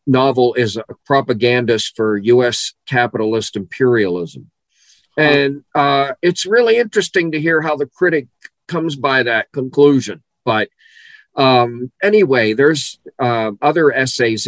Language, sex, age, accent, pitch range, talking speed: English, male, 50-69, American, 95-120 Hz, 120 wpm